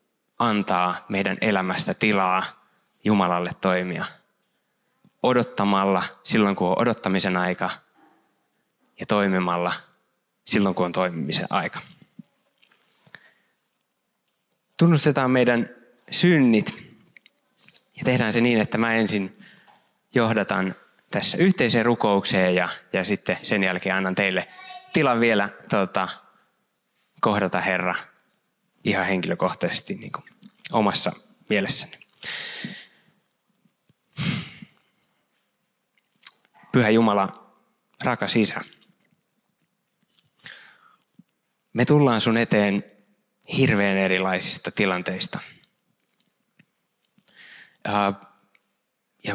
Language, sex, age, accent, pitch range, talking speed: Finnish, male, 20-39, native, 95-120 Hz, 75 wpm